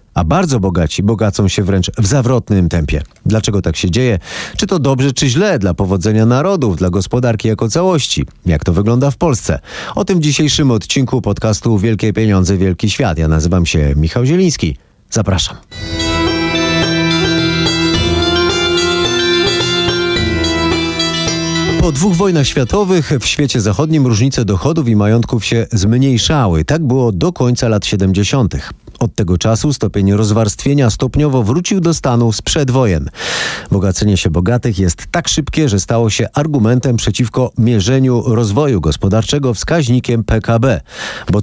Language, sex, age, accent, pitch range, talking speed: Polish, male, 30-49, native, 100-140 Hz, 135 wpm